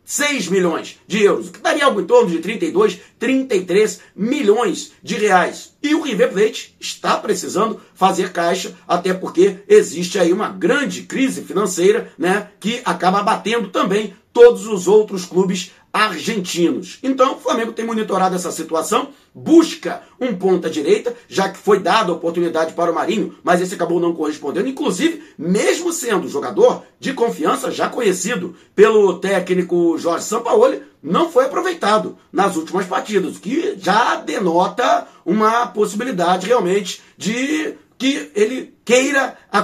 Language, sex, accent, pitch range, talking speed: Portuguese, male, Brazilian, 185-270 Hz, 145 wpm